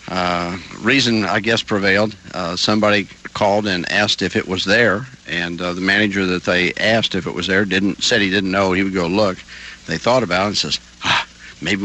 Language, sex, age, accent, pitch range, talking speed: English, male, 60-79, American, 90-105 Hz, 215 wpm